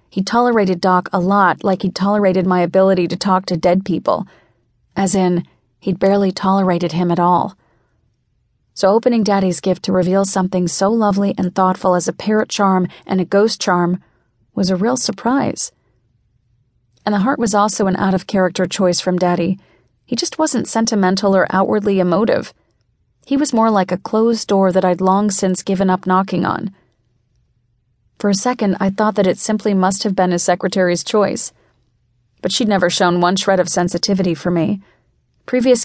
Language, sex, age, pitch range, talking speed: English, female, 30-49, 175-205 Hz, 170 wpm